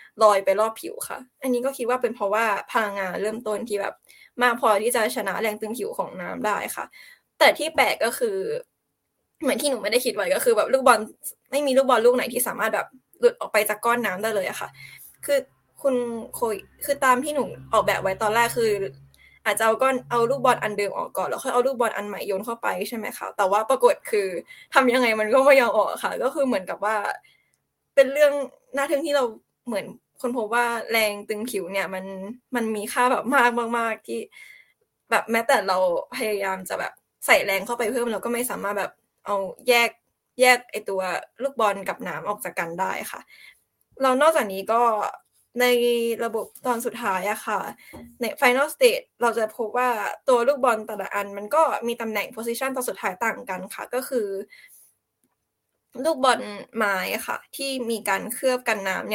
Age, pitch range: 10-29, 210-265 Hz